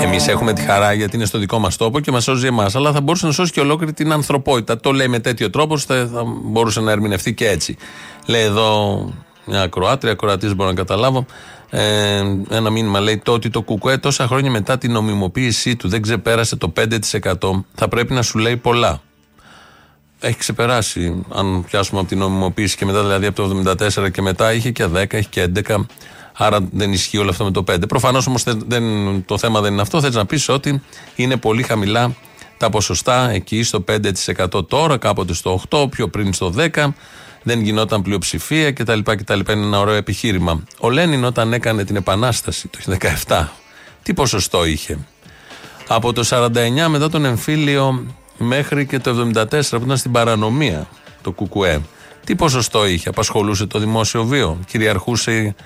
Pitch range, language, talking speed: 100-125 Hz, Greek, 180 wpm